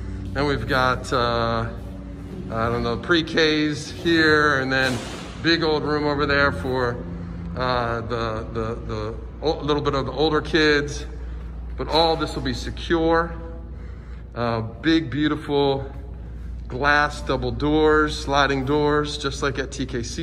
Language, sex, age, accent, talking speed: English, male, 40-59, American, 135 wpm